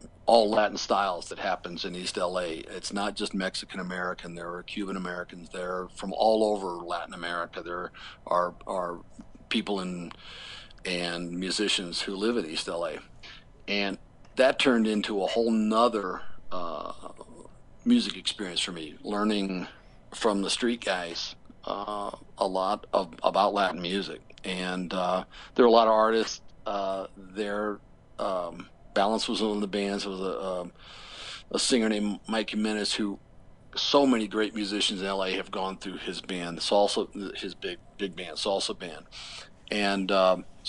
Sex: male